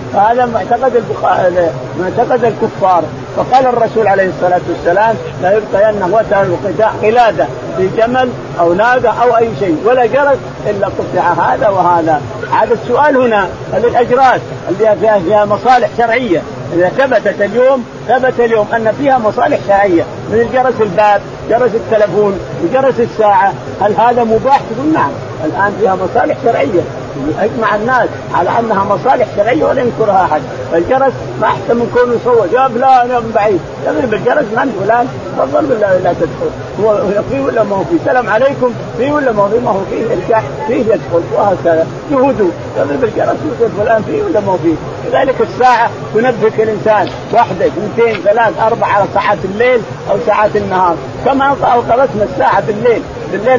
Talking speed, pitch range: 160 wpm, 200-255 Hz